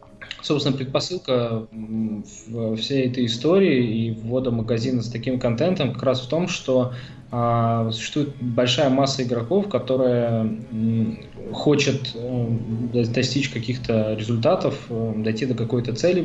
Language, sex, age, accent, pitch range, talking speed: Russian, male, 20-39, native, 115-135 Hz, 120 wpm